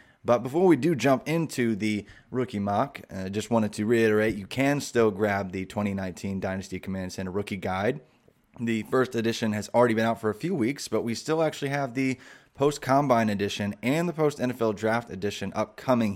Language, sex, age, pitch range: English, male, 20-39, 100-130 Hz